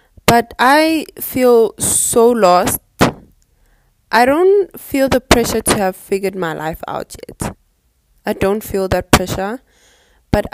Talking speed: 130 wpm